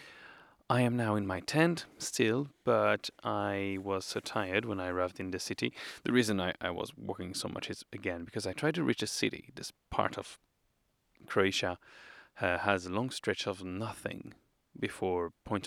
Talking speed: 185 wpm